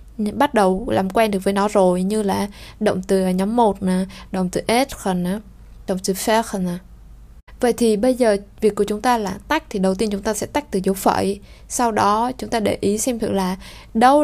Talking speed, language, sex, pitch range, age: 210 wpm, Vietnamese, female, 195-235 Hz, 20-39